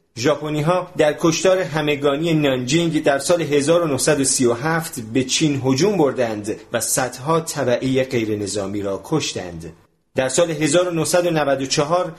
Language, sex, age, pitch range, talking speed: Persian, male, 40-59, 125-165 Hz, 115 wpm